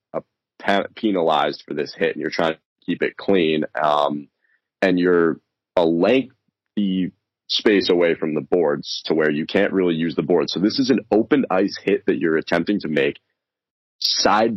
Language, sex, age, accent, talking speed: English, male, 30-49, American, 175 wpm